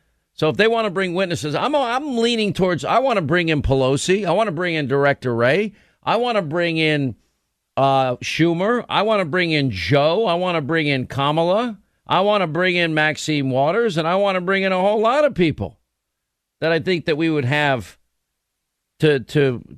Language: English